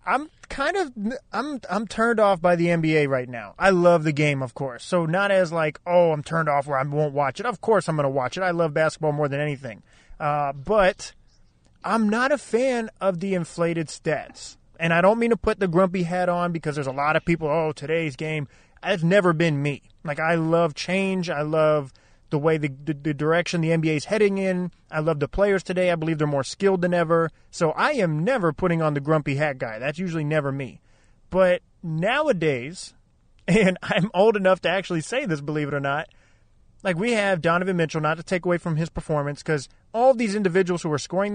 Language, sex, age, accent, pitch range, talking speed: English, male, 30-49, American, 150-190 Hz, 220 wpm